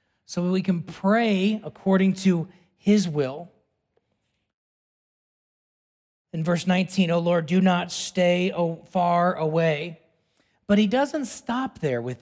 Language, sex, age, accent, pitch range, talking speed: English, male, 40-59, American, 180-235 Hz, 130 wpm